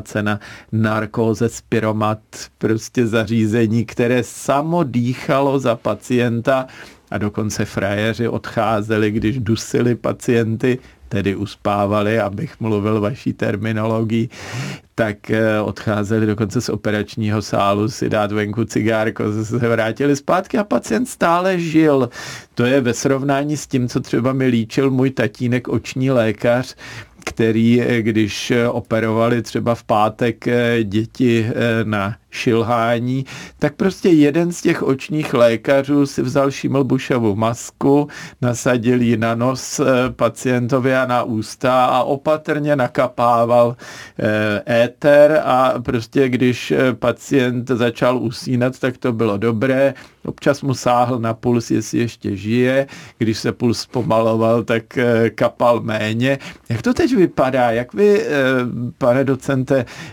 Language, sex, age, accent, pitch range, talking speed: Czech, male, 50-69, native, 110-130 Hz, 120 wpm